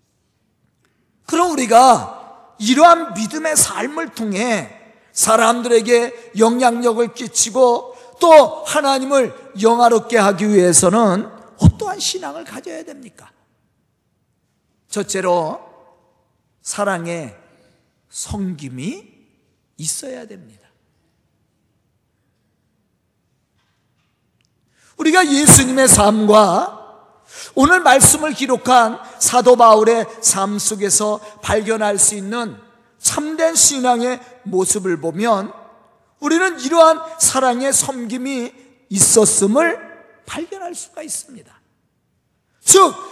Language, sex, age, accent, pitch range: Korean, male, 40-59, native, 220-310 Hz